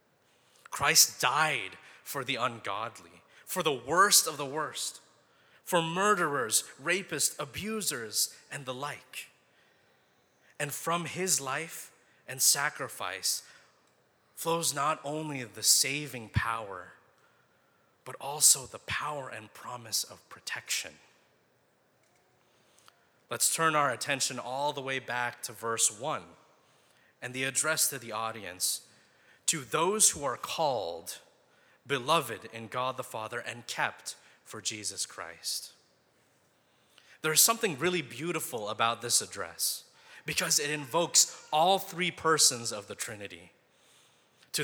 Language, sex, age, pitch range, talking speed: English, male, 30-49, 120-155 Hz, 115 wpm